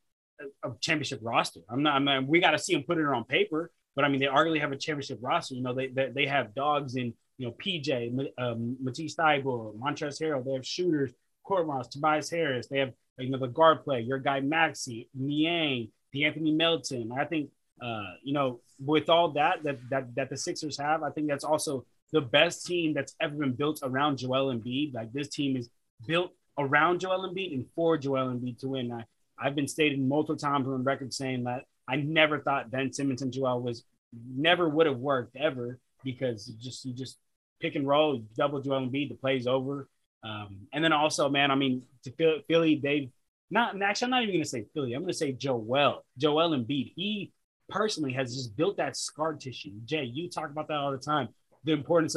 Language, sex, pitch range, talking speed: English, male, 130-155 Hz, 210 wpm